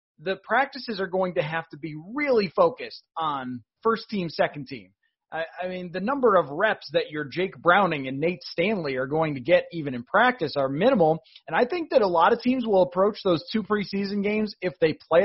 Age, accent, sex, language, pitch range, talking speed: 30-49, American, male, English, 165-205 Hz, 215 wpm